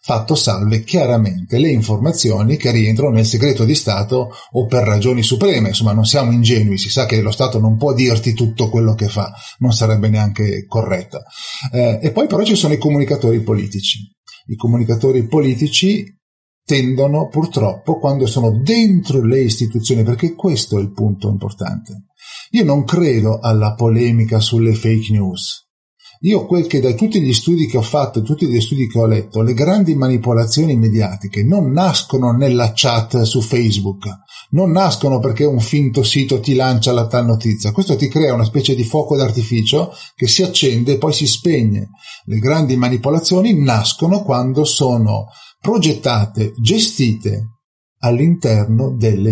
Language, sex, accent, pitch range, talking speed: Italian, male, native, 110-145 Hz, 160 wpm